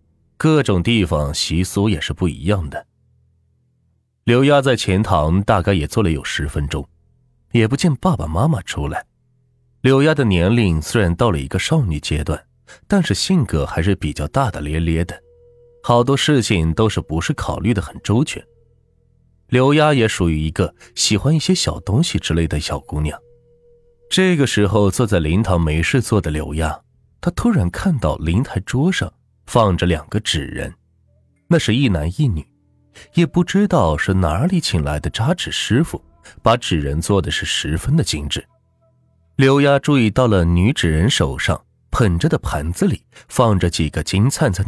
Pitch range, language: 80-130 Hz, Chinese